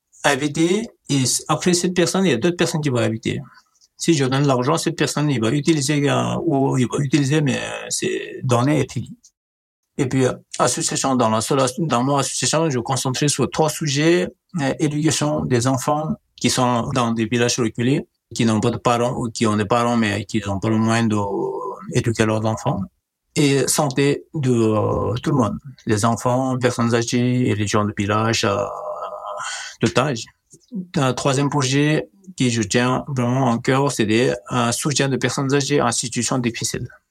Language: French